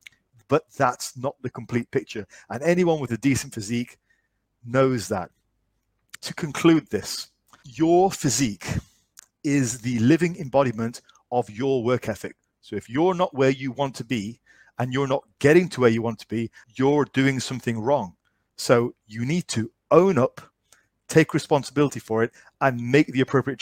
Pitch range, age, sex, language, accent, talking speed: 115-145 Hz, 40-59, male, English, British, 165 wpm